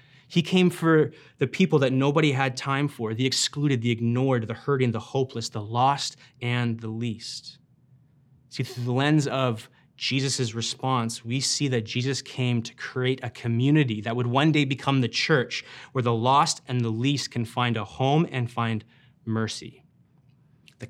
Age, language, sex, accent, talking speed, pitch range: 20-39, English, male, American, 170 wpm, 120-140 Hz